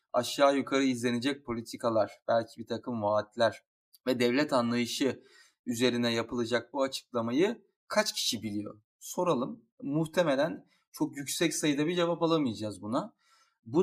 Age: 30-49